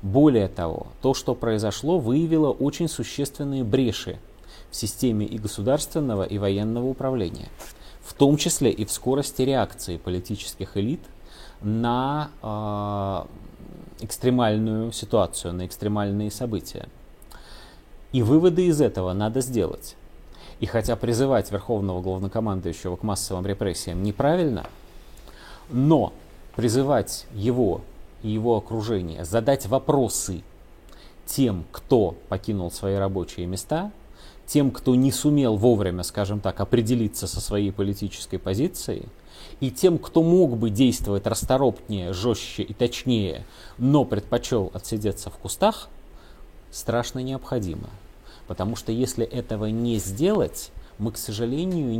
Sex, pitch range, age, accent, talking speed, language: male, 95-130 Hz, 30-49, native, 115 wpm, Russian